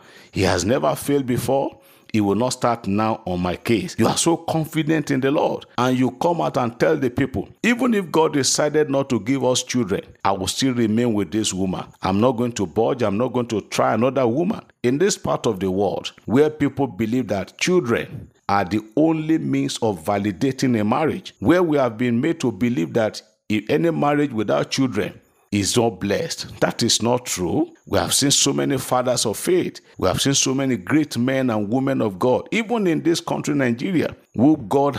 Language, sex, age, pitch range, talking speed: English, male, 50-69, 105-140 Hz, 210 wpm